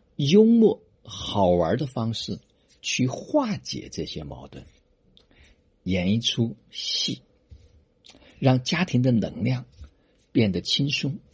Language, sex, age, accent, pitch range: Chinese, male, 50-69, native, 85-140 Hz